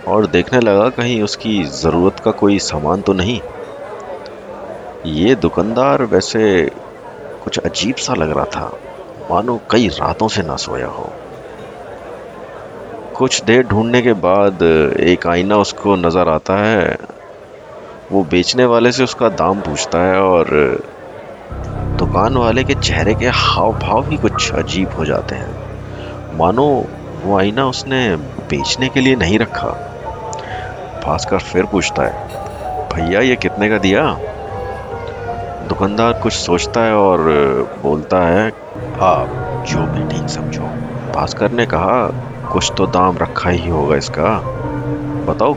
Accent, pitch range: Indian, 90-120 Hz